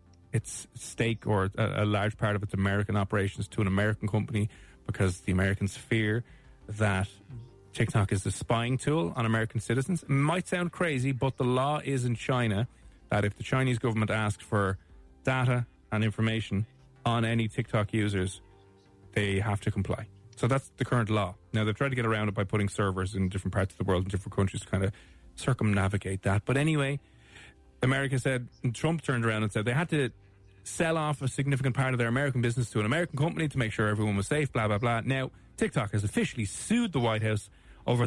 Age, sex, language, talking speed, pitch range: 30-49, male, English, 200 wpm, 100-125 Hz